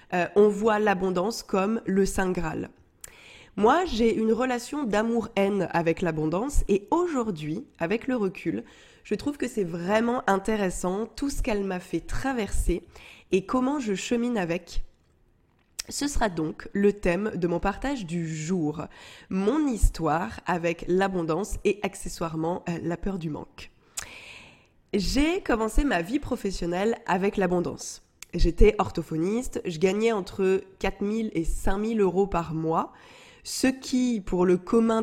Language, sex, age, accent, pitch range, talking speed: French, female, 20-39, French, 175-235 Hz, 140 wpm